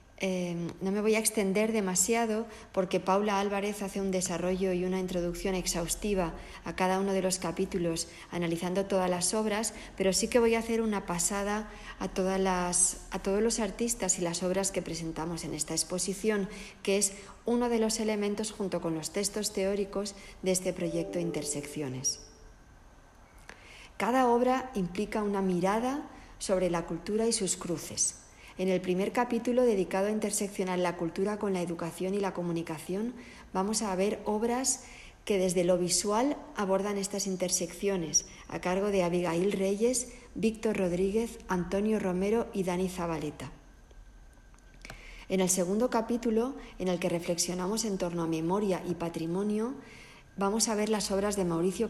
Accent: Spanish